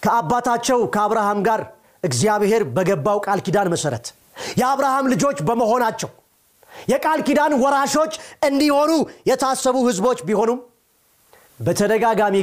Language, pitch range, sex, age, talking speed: Amharic, 200-295 Hz, male, 40-59, 90 wpm